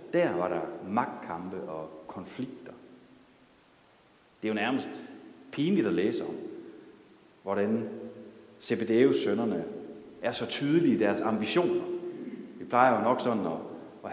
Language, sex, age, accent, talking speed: Danish, male, 40-59, native, 125 wpm